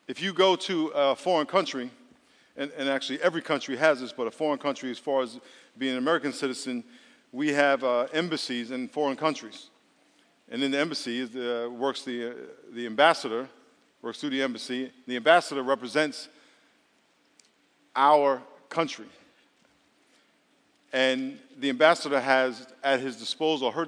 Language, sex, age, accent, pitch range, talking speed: English, male, 50-69, American, 130-160 Hz, 150 wpm